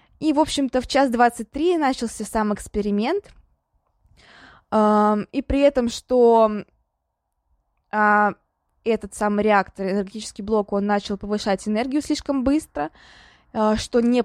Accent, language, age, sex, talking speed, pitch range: native, Russian, 20-39, female, 110 wpm, 215-260 Hz